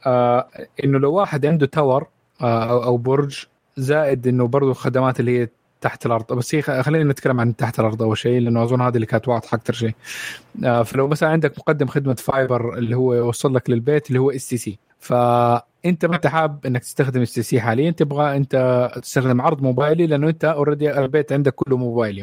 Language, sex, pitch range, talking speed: Arabic, male, 120-150 Hz, 190 wpm